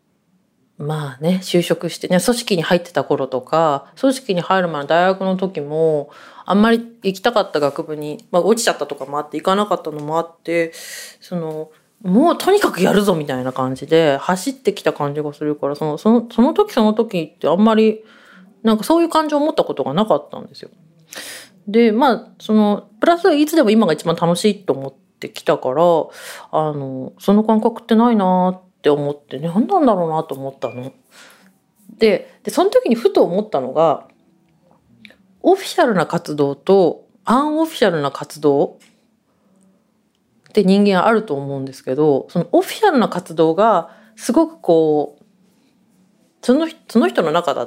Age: 30-49